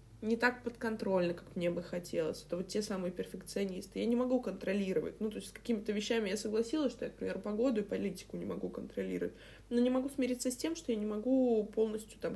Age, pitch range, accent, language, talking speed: 20-39, 180-250 Hz, native, Russian, 220 wpm